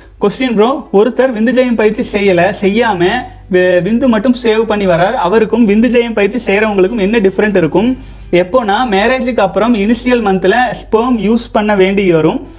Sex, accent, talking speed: male, native, 150 wpm